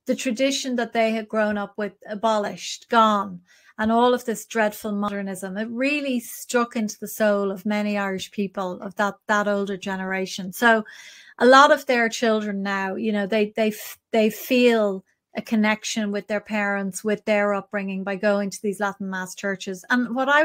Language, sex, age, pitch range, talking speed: English, female, 30-49, 205-245 Hz, 180 wpm